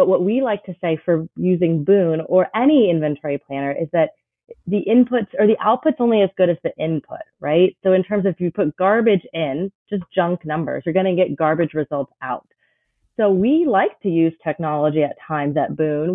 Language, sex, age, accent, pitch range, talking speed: English, female, 30-49, American, 160-200 Hz, 210 wpm